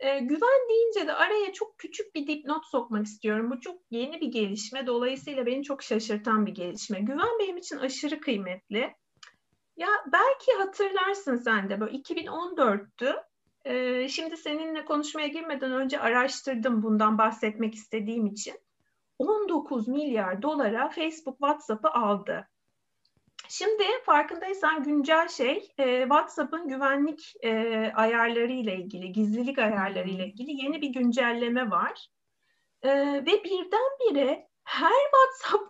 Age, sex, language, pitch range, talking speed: 50-69, female, Turkish, 235-335 Hz, 125 wpm